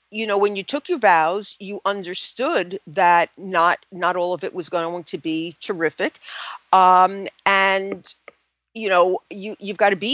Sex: female